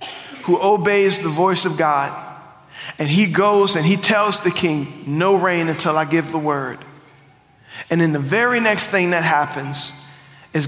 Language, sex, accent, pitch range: English, male, American, 155-245 Hz